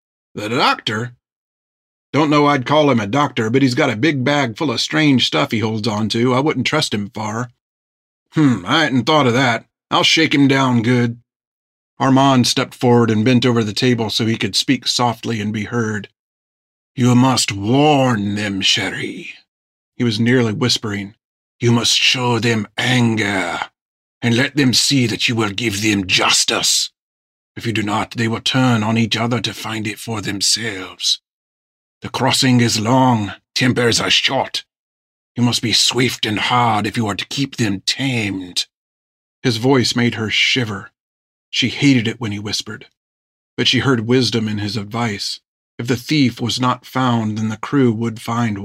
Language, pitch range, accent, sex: English, 105-125 Hz, American, male